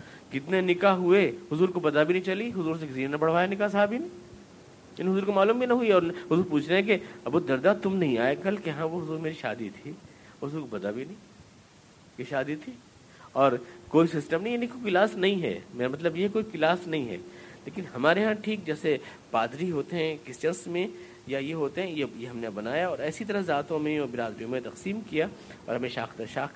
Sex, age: male, 50-69